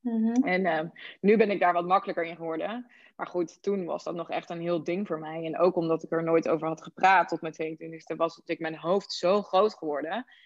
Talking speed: 235 wpm